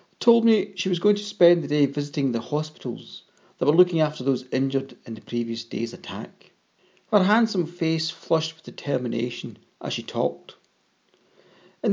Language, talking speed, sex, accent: English, 165 wpm, male, British